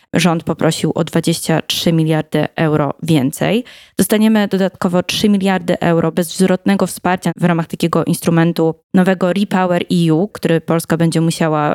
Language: Polish